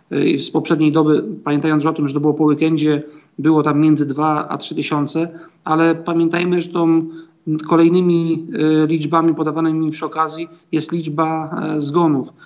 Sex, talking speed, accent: male, 145 wpm, native